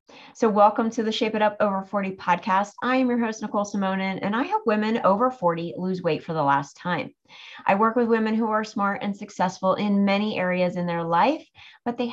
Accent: American